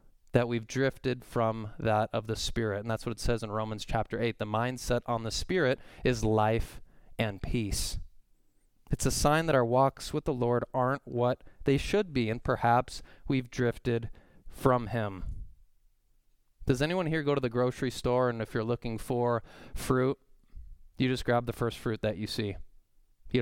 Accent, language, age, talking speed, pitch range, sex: American, English, 20-39, 180 wpm, 115-135 Hz, male